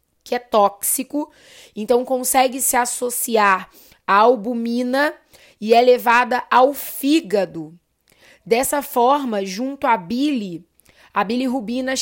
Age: 20-39